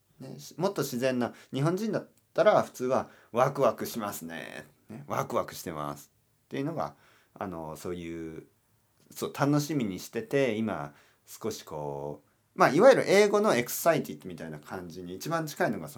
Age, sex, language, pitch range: 40-59, male, Japanese, 95-150 Hz